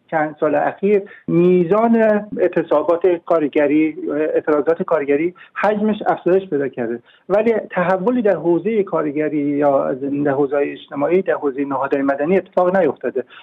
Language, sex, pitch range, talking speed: Persian, male, 155-195 Hz, 120 wpm